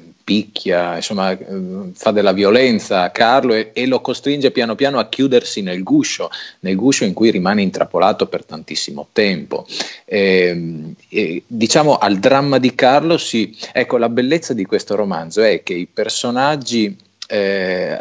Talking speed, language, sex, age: 135 wpm, Italian, male, 30-49